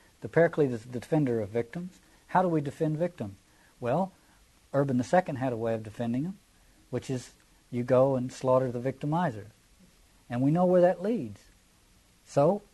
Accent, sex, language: American, male, English